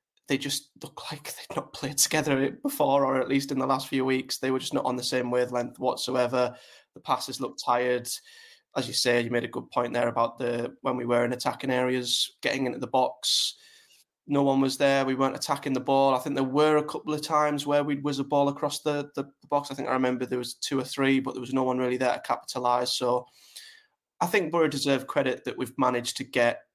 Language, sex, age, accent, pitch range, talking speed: English, male, 20-39, British, 125-140 Hz, 240 wpm